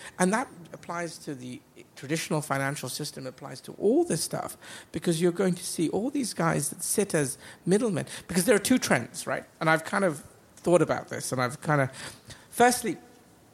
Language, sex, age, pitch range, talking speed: English, male, 50-69, 130-170 Hz, 190 wpm